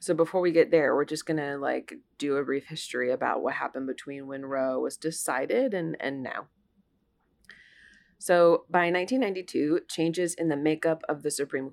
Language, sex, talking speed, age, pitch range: English, female, 180 wpm, 20-39, 145-175 Hz